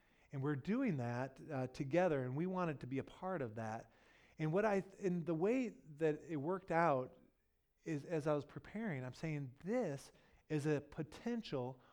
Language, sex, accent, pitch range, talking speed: English, male, American, 135-175 Hz, 185 wpm